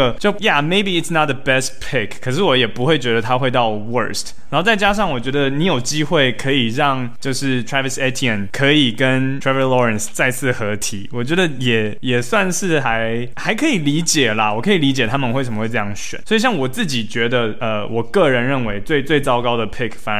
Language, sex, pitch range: Chinese, male, 115-145 Hz